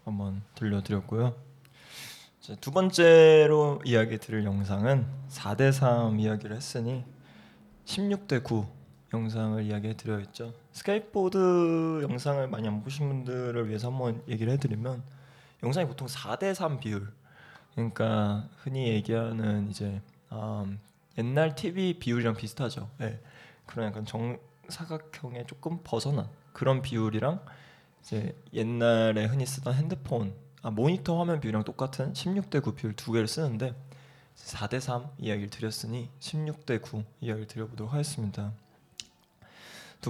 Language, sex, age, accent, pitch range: Korean, male, 20-39, native, 110-145 Hz